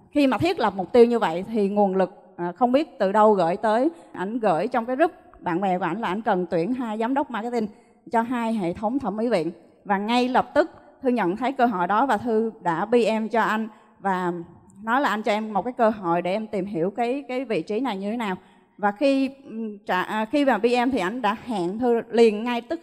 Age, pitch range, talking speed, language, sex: 20-39, 205-255 Hz, 240 wpm, Vietnamese, female